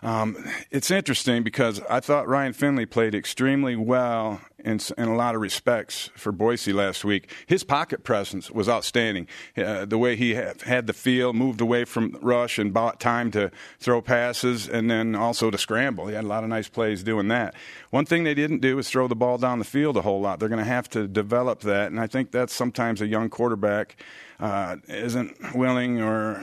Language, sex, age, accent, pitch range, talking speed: English, male, 50-69, American, 105-125 Hz, 210 wpm